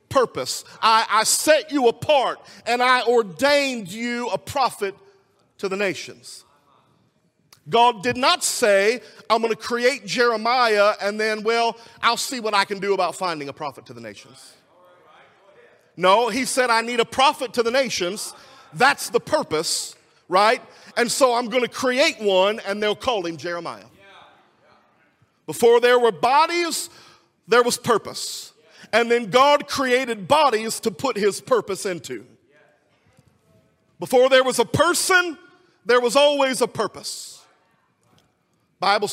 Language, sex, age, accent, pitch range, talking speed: English, male, 40-59, American, 205-260 Hz, 145 wpm